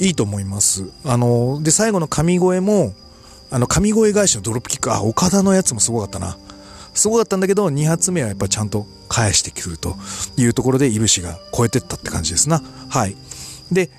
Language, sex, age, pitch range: Japanese, male, 40-59, 95-140 Hz